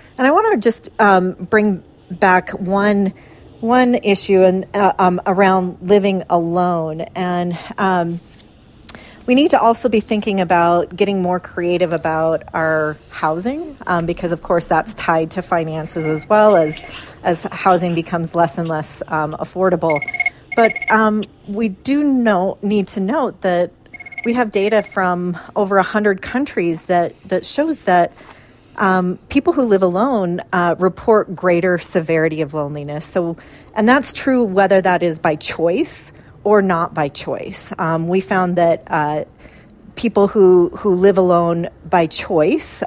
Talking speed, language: 150 wpm, English